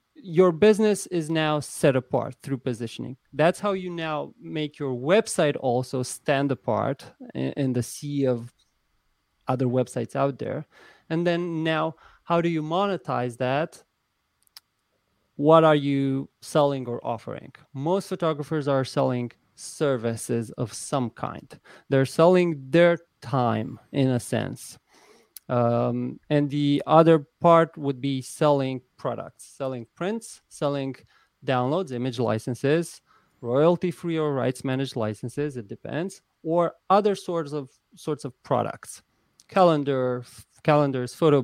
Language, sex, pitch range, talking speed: English, male, 125-165 Hz, 125 wpm